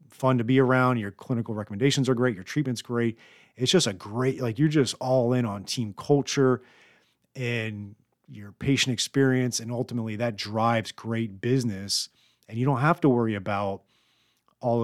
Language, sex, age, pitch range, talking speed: English, male, 40-59, 100-125 Hz, 170 wpm